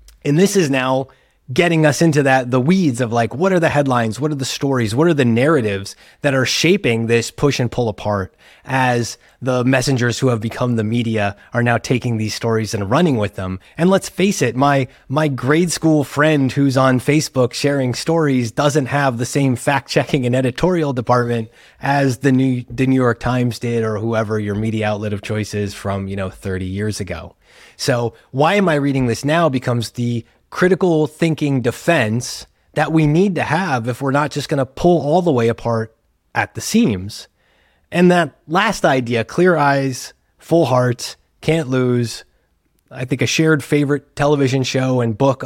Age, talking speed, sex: 30-49, 190 wpm, male